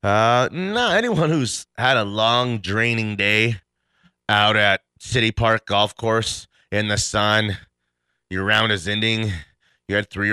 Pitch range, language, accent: 85-120 Hz, English, American